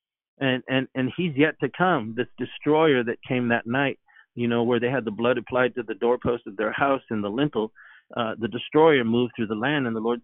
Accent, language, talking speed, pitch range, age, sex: American, English, 235 wpm, 120-155 Hz, 50-69, male